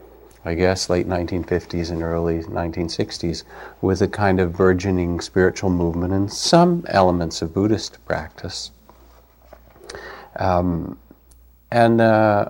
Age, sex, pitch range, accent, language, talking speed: 50-69, male, 85-95 Hz, American, English, 105 wpm